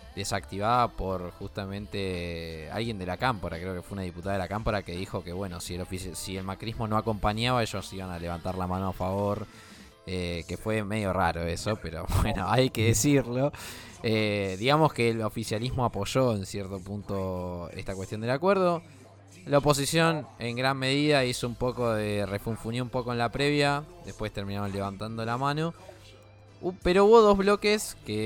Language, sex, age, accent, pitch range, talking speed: Spanish, male, 20-39, Argentinian, 95-125 Hz, 175 wpm